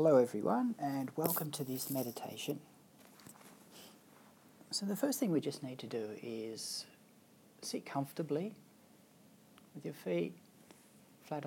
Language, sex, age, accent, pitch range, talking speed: English, male, 60-79, Australian, 130-170 Hz, 120 wpm